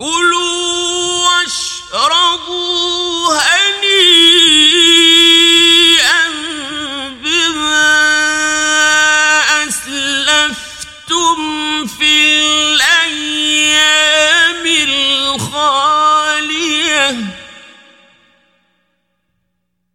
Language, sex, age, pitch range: Persian, male, 50-69, 255-305 Hz